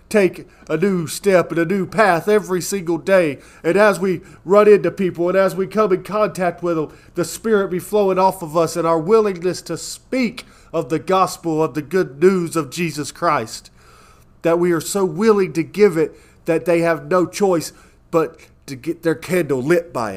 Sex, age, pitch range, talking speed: male, 40-59, 150-195 Hz, 200 wpm